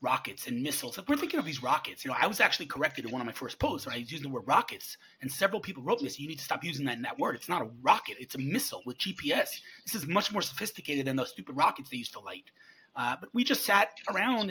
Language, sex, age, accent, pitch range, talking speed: English, male, 30-49, American, 135-200 Hz, 290 wpm